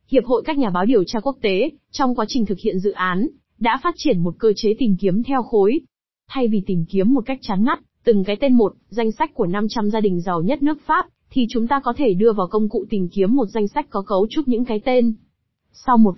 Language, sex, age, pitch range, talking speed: Vietnamese, female, 20-39, 200-250 Hz, 260 wpm